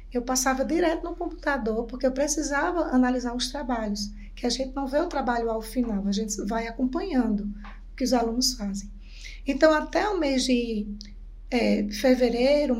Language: Portuguese